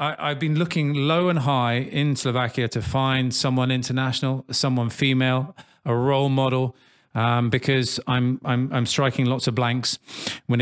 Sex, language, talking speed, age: male, English, 155 wpm, 40-59